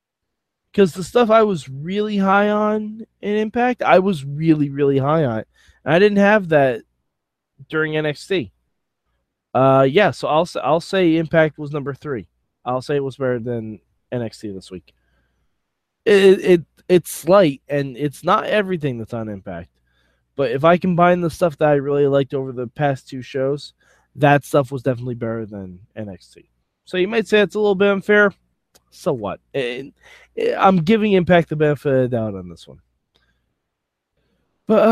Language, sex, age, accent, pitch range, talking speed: English, male, 20-39, American, 120-190 Hz, 170 wpm